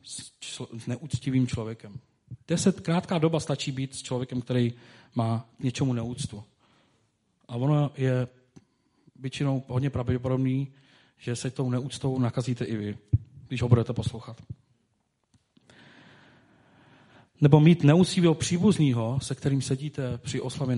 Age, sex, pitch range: 40-59, male, 125-145 Hz